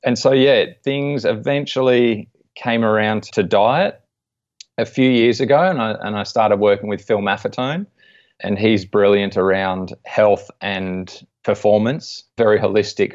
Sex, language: male, English